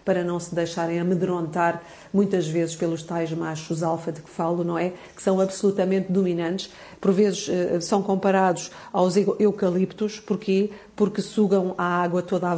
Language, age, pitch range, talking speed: Portuguese, 50-69, 175-195 Hz, 155 wpm